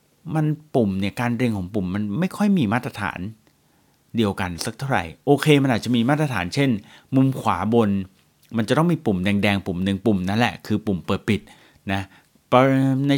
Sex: male